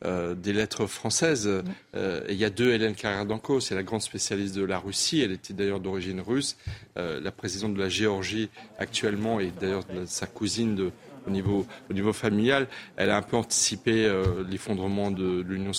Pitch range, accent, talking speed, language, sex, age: 100-120 Hz, French, 190 wpm, French, male, 40-59